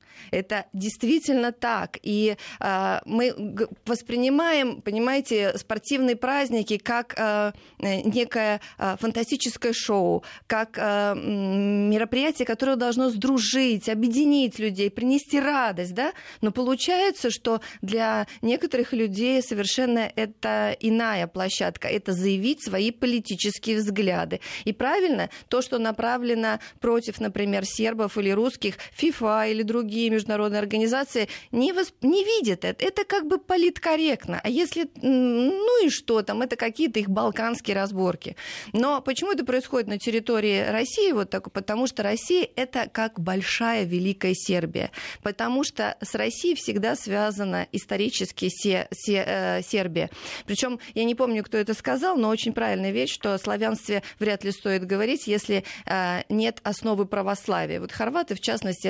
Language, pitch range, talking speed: Russian, 205-255 Hz, 135 wpm